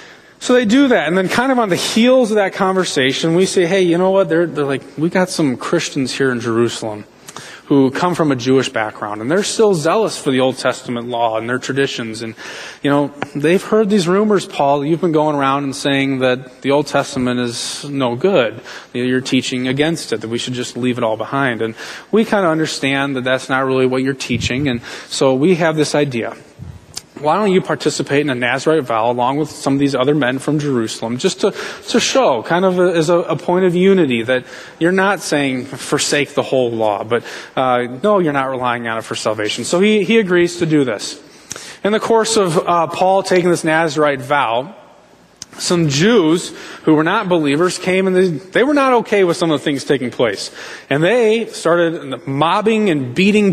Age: 20-39